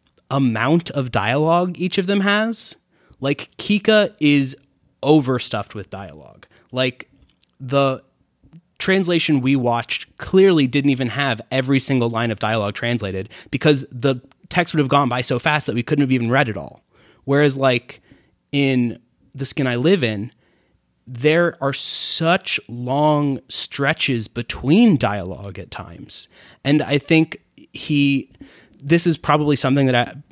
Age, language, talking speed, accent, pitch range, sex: 20-39, English, 140 wpm, American, 120-145 Hz, male